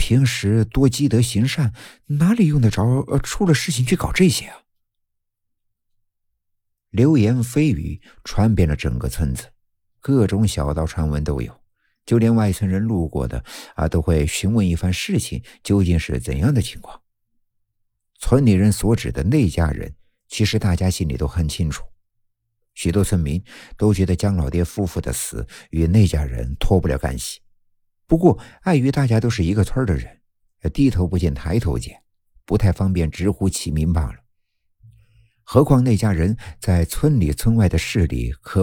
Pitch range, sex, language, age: 85-115 Hz, male, Chinese, 50-69